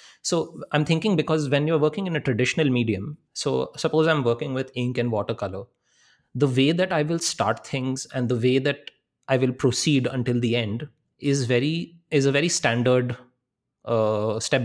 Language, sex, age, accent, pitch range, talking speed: English, male, 20-39, Indian, 125-150 Hz, 175 wpm